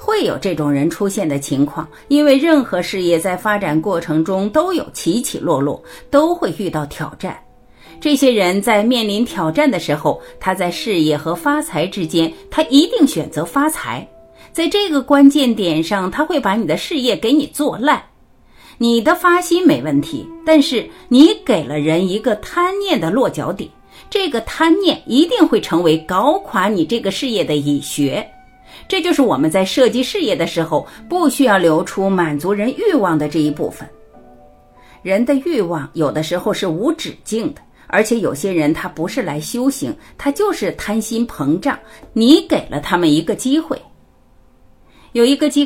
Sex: female